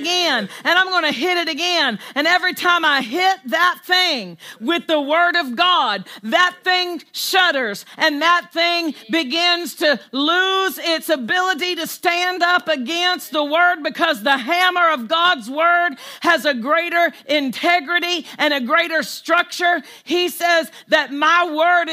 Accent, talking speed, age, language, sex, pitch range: American, 155 wpm, 50-69, English, female, 285-345 Hz